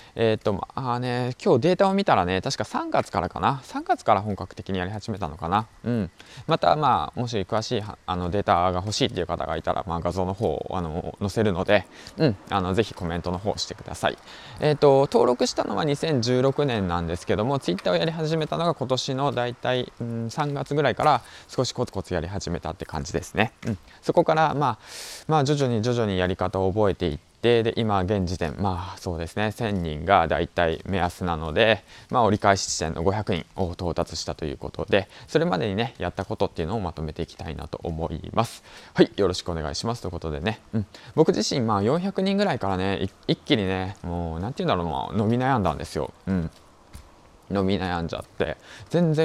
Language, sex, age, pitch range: Japanese, male, 20-39, 90-120 Hz